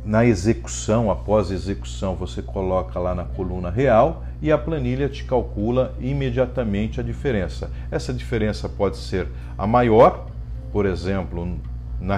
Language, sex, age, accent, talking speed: Portuguese, male, 40-59, Brazilian, 135 wpm